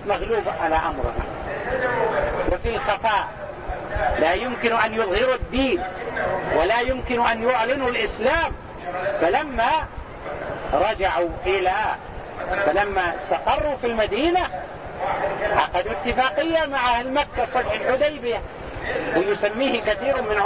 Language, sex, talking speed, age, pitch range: English, male, 90 wpm, 50-69, 190-275 Hz